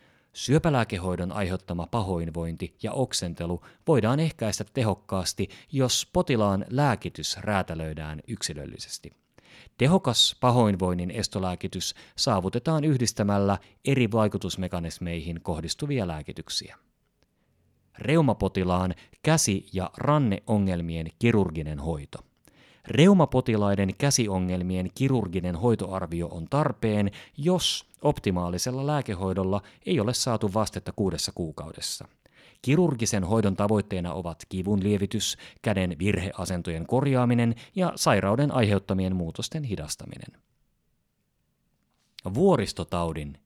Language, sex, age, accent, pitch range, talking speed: Finnish, male, 30-49, native, 90-125 Hz, 80 wpm